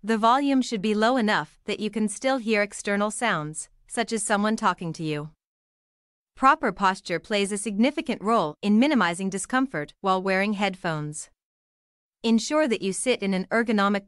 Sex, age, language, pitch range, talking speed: female, 30-49, Vietnamese, 170-230 Hz, 160 wpm